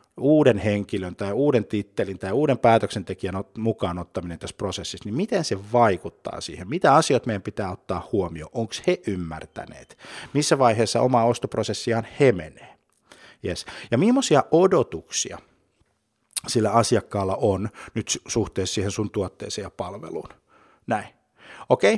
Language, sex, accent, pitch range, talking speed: Finnish, male, native, 100-125 Hz, 130 wpm